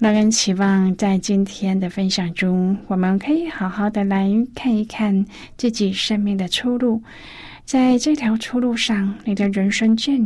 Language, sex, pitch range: Chinese, female, 185-225 Hz